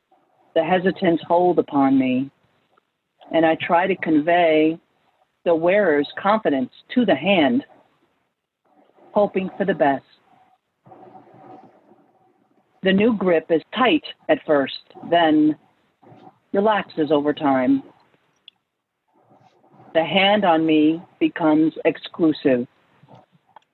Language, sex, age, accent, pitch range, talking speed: English, female, 50-69, American, 155-190 Hz, 95 wpm